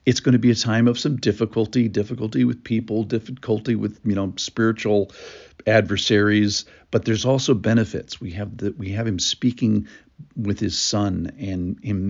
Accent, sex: American, male